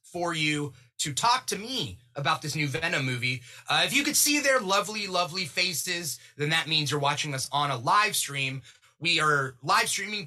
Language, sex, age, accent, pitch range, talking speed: English, male, 30-49, American, 130-180 Hz, 200 wpm